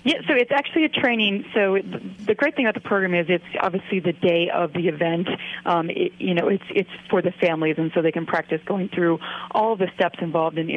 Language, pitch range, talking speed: English, 165-190 Hz, 240 wpm